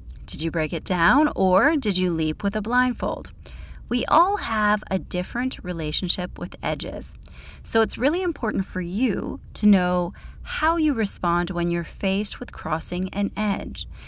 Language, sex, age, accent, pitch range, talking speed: English, female, 30-49, American, 165-220 Hz, 160 wpm